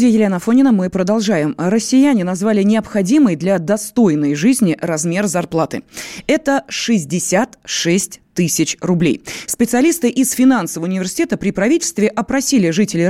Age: 20-39